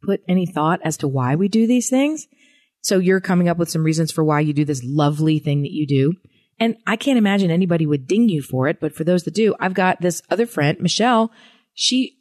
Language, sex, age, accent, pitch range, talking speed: English, female, 40-59, American, 140-200 Hz, 240 wpm